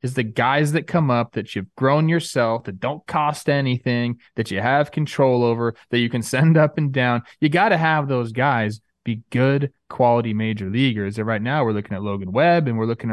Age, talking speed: 20-39, 220 wpm